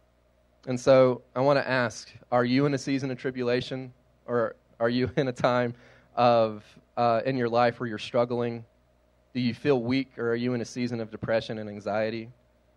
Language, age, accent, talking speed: English, 20-39, American, 195 wpm